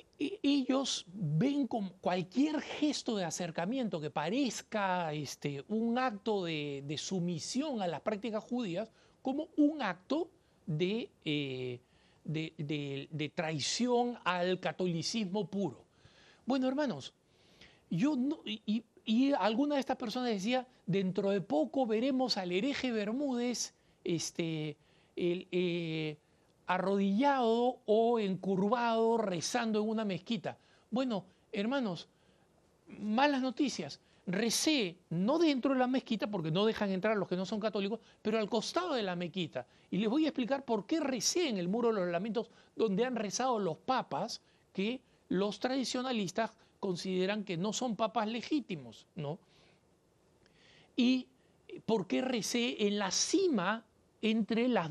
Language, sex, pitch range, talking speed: Spanish, male, 180-255 Hz, 135 wpm